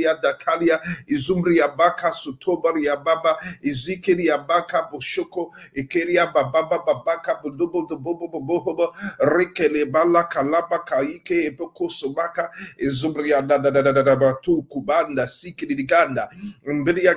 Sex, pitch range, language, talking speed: male, 145-170 Hz, English, 85 wpm